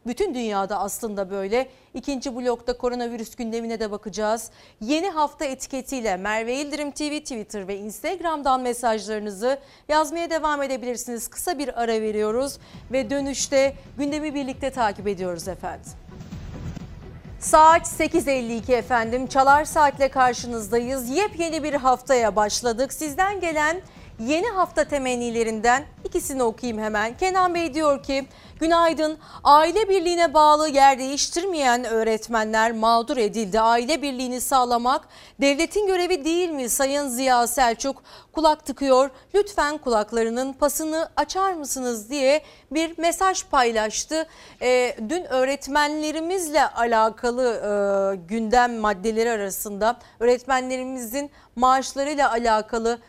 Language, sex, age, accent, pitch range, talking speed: Turkish, female, 40-59, native, 230-300 Hz, 110 wpm